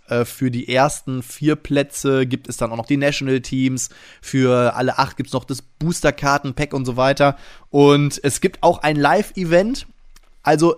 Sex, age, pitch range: male, 20-39, 130-160 Hz